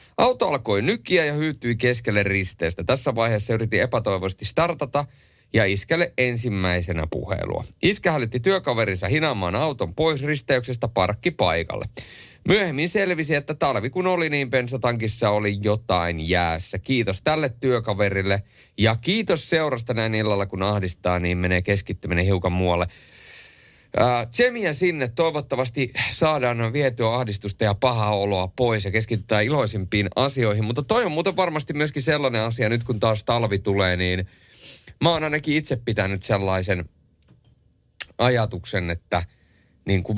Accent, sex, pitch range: native, male, 95-135 Hz